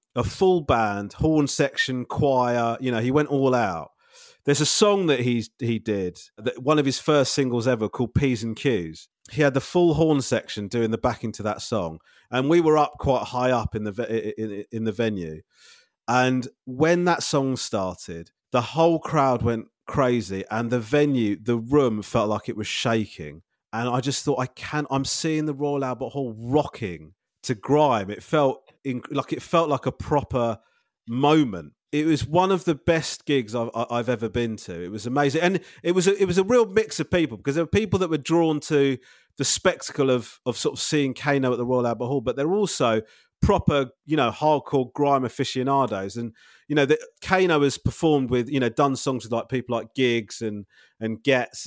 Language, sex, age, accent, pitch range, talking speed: English, male, 30-49, British, 115-150 Hz, 200 wpm